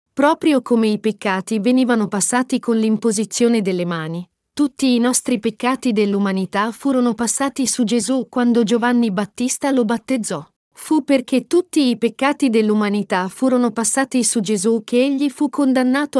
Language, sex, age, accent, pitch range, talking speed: Italian, female, 40-59, native, 220-275 Hz, 140 wpm